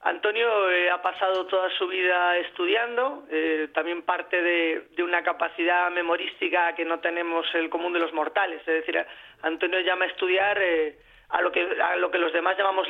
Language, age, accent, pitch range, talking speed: Spanish, 30-49, Spanish, 170-190 Hz, 185 wpm